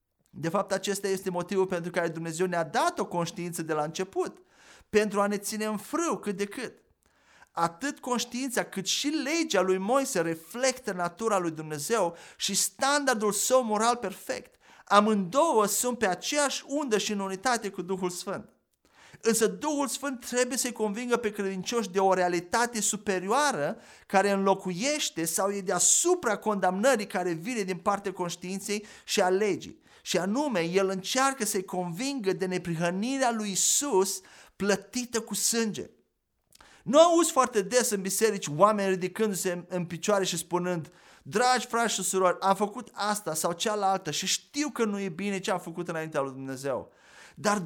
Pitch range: 180-230 Hz